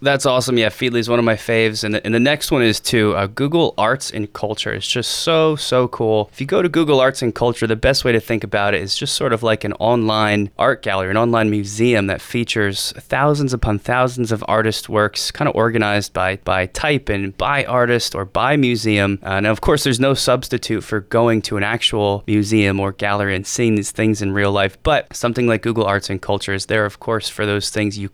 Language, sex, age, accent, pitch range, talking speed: English, male, 20-39, American, 100-120 Hz, 235 wpm